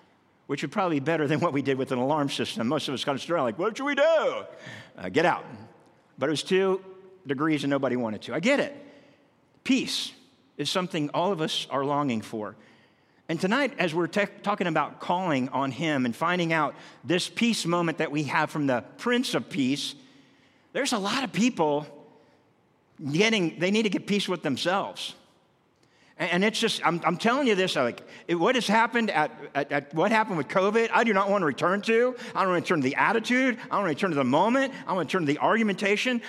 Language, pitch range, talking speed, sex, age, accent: English, 150-225 Hz, 225 wpm, male, 50-69, American